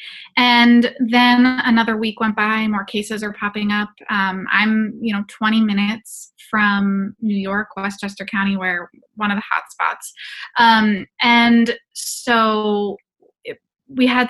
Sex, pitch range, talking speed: female, 195-225 Hz, 145 wpm